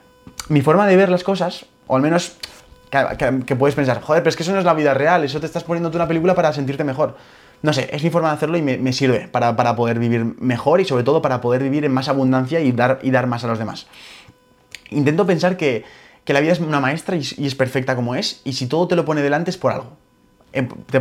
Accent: Spanish